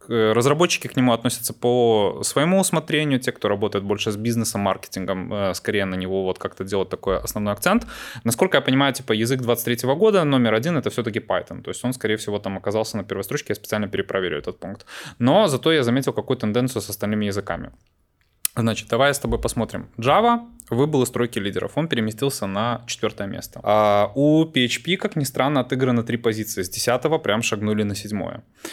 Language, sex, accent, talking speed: Russian, male, native, 190 wpm